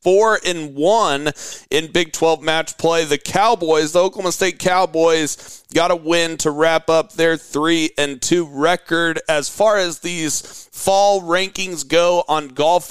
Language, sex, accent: English, male, American